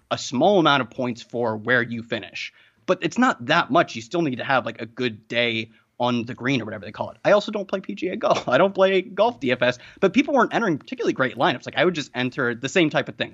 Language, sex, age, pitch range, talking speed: English, male, 30-49, 120-155 Hz, 265 wpm